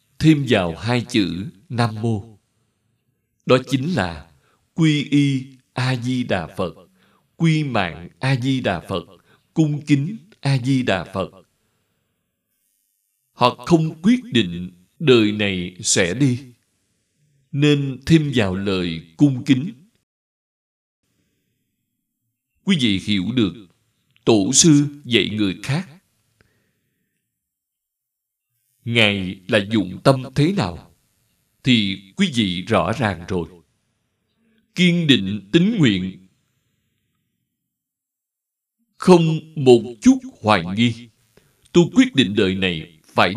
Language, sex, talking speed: Vietnamese, male, 100 wpm